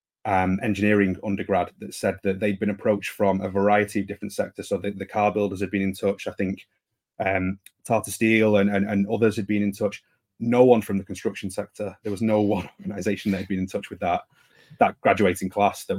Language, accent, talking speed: English, British, 220 wpm